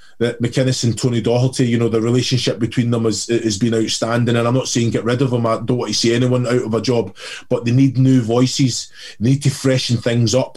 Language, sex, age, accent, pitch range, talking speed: English, male, 20-39, British, 120-140 Hz, 250 wpm